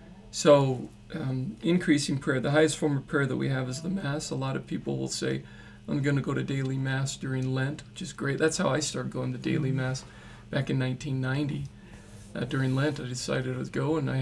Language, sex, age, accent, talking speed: English, male, 40-59, American, 225 wpm